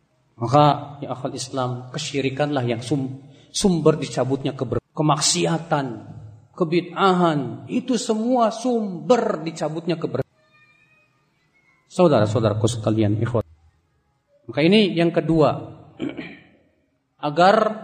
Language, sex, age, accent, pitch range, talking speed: Indonesian, male, 40-59, native, 155-235 Hz, 75 wpm